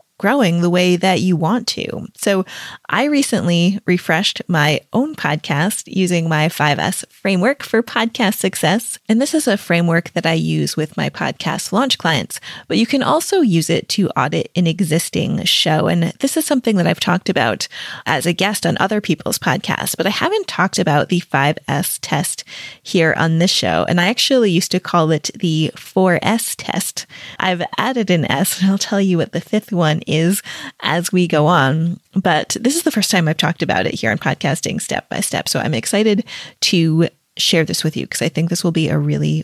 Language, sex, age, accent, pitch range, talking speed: English, female, 20-39, American, 165-215 Hz, 200 wpm